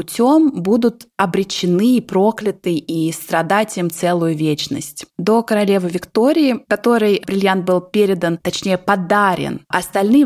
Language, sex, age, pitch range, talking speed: Russian, female, 20-39, 170-215 Hz, 110 wpm